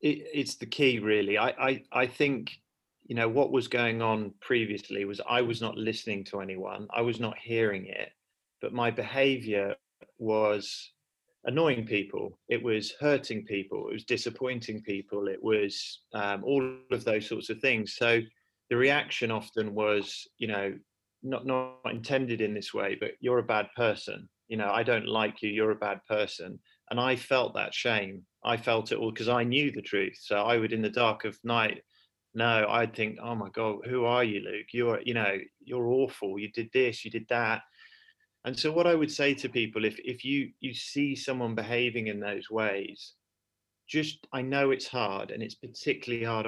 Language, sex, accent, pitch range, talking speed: English, male, British, 105-125 Hz, 190 wpm